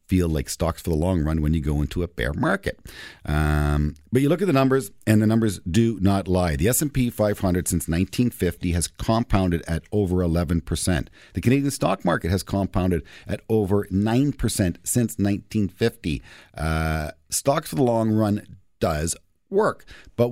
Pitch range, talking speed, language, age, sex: 90-120 Hz, 170 wpm, English, 50-69, male